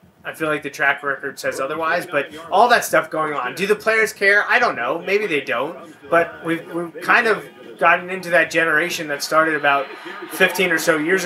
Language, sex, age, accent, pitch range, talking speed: English, male, 30-49, American, 145-175 Hz, 215 wpm